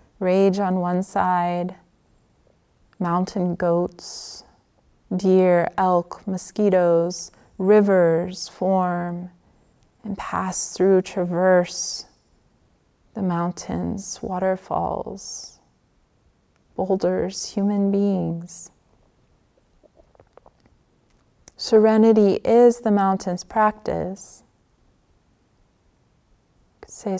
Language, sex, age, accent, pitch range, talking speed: English, female, 30-49, American, 175-215 Hz, 60 wpm